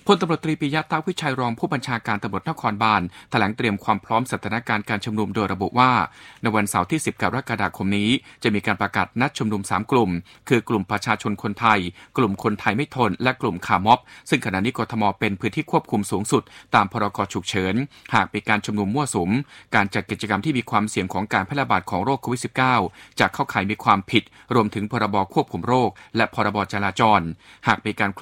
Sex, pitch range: male, 105-125 Hz